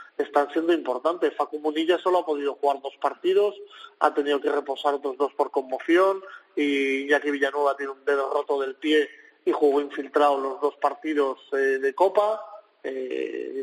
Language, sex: Spanish, male